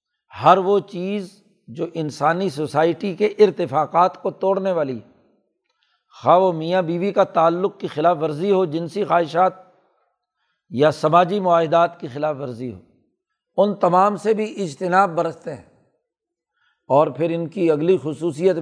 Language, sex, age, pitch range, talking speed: Urdu, male, 60-79, 155-200 Hz, 140 wpm